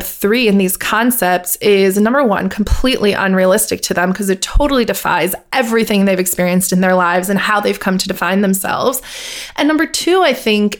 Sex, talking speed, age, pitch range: female, 185 wpm, 30-49, 195-245 Hz